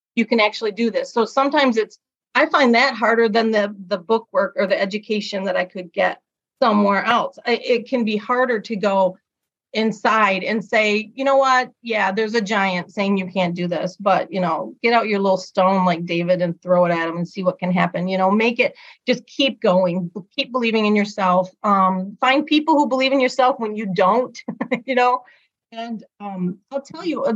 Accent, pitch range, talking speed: American, 195-265 Hz, 210 wpm